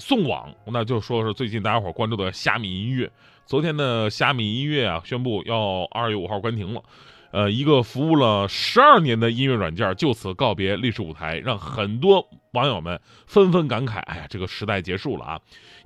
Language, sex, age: Chinese, male, 20-39